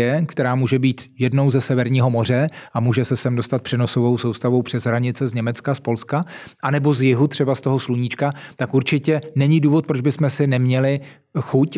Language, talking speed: Czech, 185 wpm